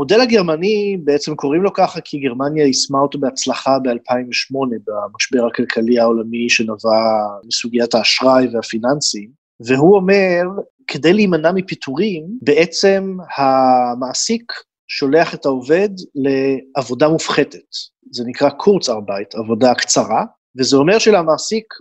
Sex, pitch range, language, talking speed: male, 135-180 Hz, Hebrew, 105 wpm